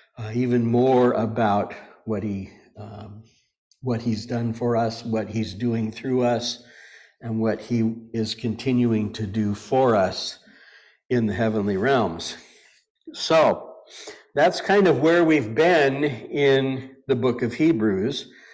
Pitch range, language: 110-130 Hz, English